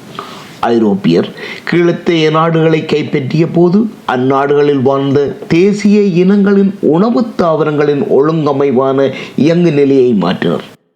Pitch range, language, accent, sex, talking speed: 145-205 Hz, Tamil, native, male, 90 wpm